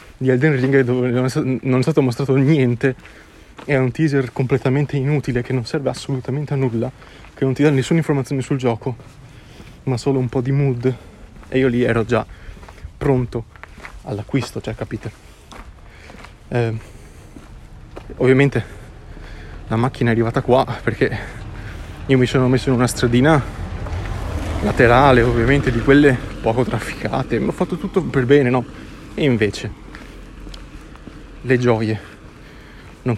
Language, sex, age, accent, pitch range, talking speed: Italian, male, 20-39, native, 110-130 Hz, 135 wpm